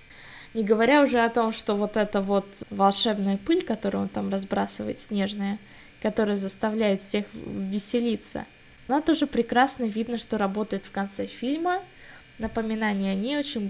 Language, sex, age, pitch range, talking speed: Russian, female, 10-29, 200-240 Hz, 145 wpm